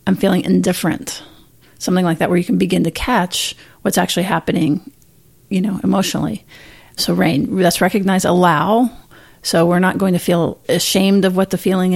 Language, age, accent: English, 40-59, American